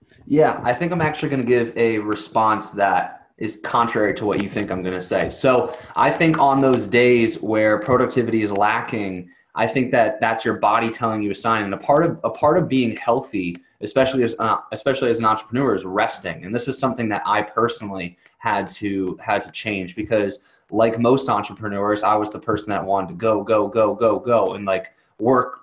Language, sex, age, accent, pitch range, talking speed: English, male, 20-39, American, 105-125 Hz, 210 wpm